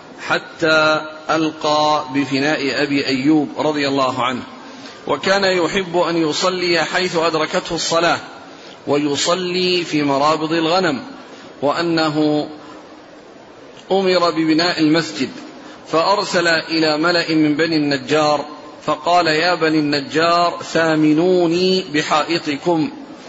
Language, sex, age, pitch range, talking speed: Arabic, male, 40-59, 150-180 Hz, 90 wpm